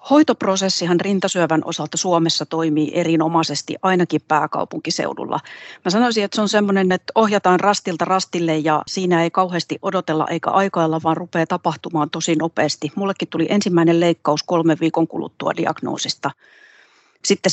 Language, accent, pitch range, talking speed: Finnish, native, 160-190 Hz, 135 wpm